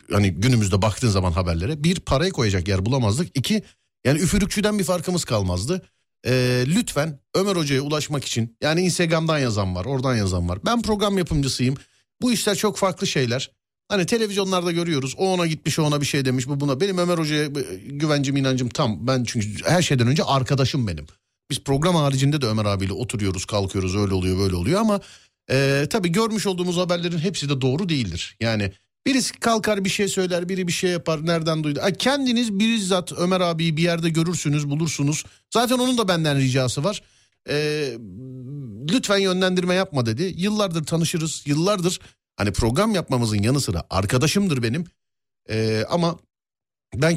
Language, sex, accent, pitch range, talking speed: Turkish, male, native, 110-175 Hz, 165 wpm